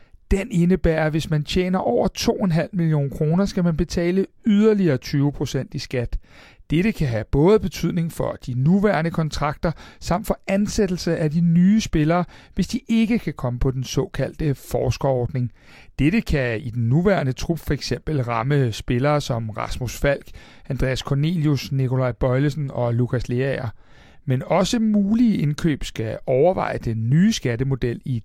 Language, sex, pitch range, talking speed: Danish, male, 130-175 Hz, 155 wpm